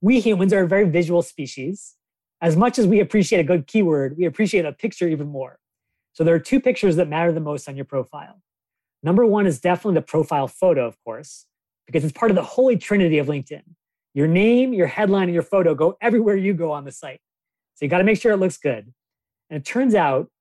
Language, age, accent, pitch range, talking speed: English, 30-49, American, 155-205 Hz, 225 wpm